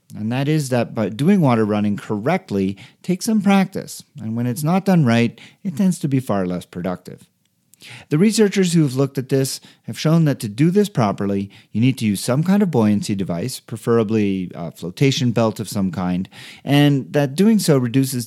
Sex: male